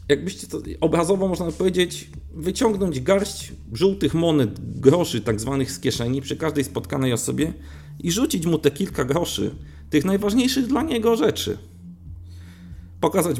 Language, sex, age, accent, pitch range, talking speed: Polish, male, 40-59, native, 110-155 Hz, 135 wpm